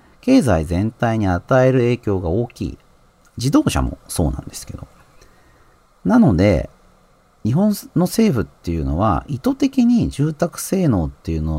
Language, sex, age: Japanese, male, 40-59